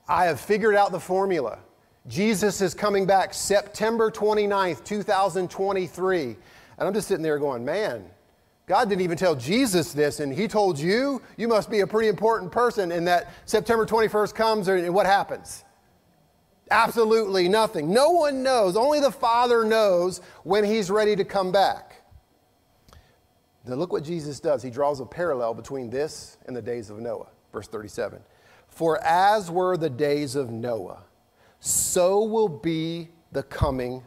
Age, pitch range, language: 40-59, 140-210 Hz, English